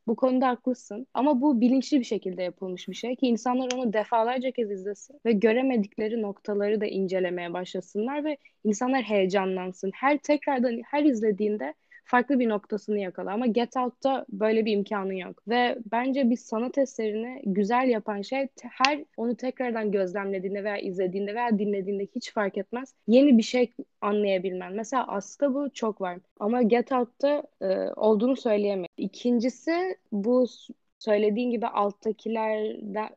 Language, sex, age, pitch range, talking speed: Turkish, female, 10-29, 210-250 Hz, 145 wpm